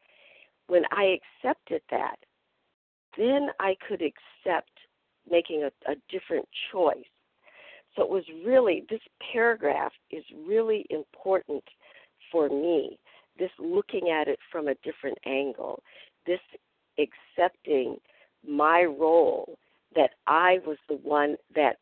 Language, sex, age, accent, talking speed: English, female, 50-69, American, 115 wpm